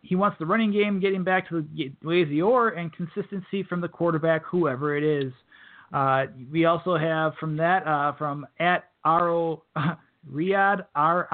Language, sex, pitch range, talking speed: English, male, 145-175 Hz, 180 wpm